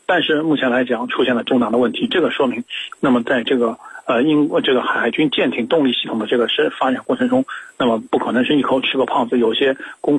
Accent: native